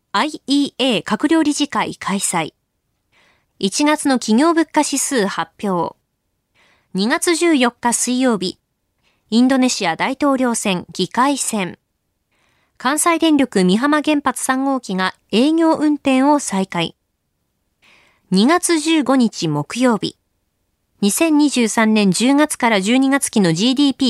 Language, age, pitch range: Japanese, 20-39, 195-290 Hz